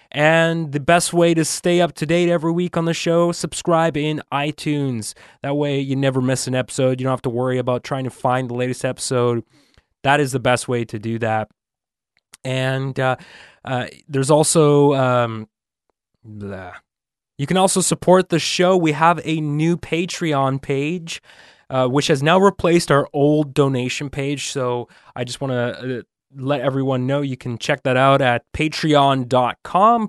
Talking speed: 170 wpm